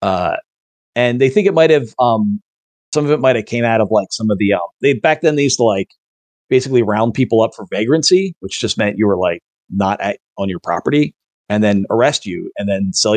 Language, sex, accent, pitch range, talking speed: English, male, American, 100-145 Hz, 235 wpm